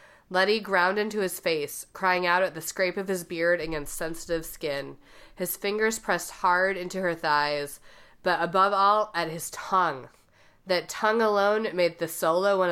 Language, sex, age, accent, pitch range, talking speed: English, female, 30-49, American, 165-195 Hz, 170 wpm